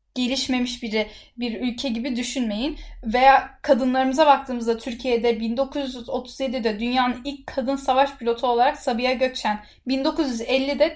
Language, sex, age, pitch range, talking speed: Turkish, female, 10-29, 240-280 Hz, 110 wpm